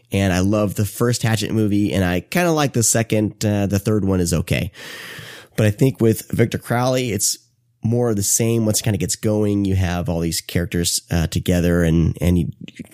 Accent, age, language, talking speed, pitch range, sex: American, 30-49, English, 225 wpm, 90-115 Hz, male